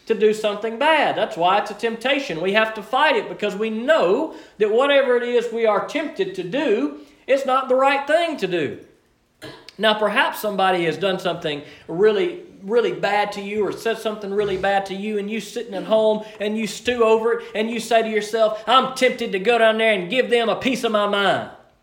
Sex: male